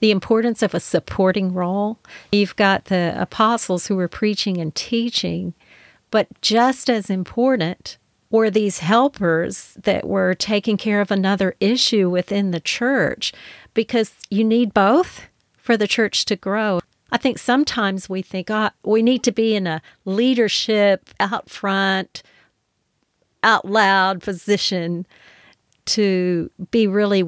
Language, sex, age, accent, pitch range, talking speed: English, female, 50-69, American, 190-230 Hz, 135 wpm